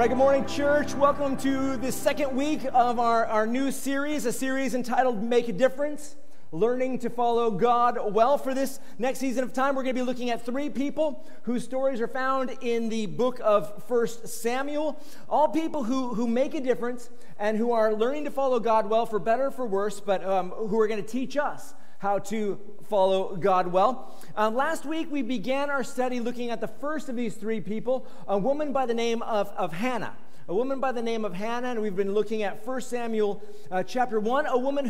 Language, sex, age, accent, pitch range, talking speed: English, male, 40-59, American, 220-270 Hz, 215 wpm